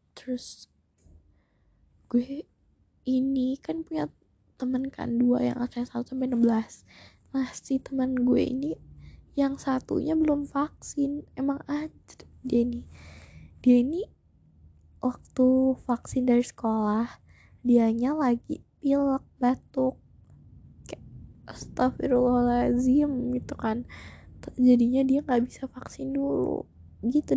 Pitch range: 235-270 Hz